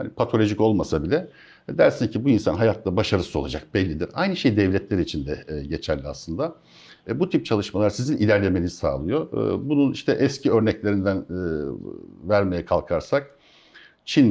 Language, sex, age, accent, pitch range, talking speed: Turkish, male, 60-79, native, 85-110 Hz, 130 wpm